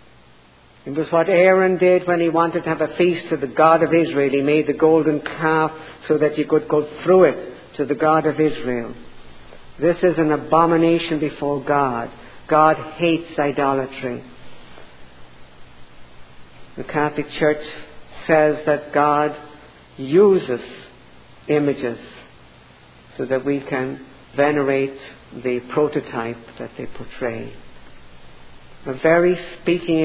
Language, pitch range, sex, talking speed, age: English, 130-160 Hz, female, 130 wpm, 60-79